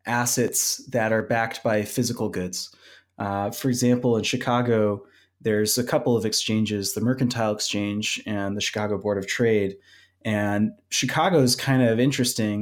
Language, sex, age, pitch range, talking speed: English, male, 20-39, 100-125 Hz, 150 wpm